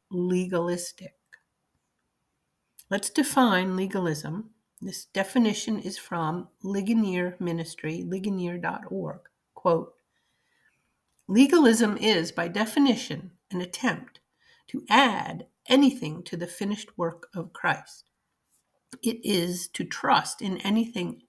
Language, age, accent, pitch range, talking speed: English, 50-69, American, 175-235 Hz, 95 wpm